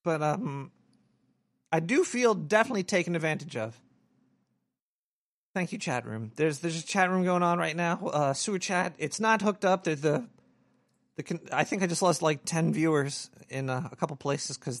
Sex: male